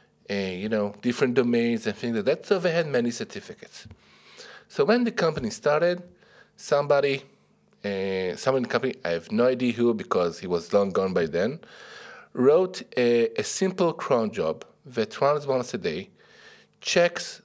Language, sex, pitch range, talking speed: Czech, male, 120-185 Hz, 170 wpm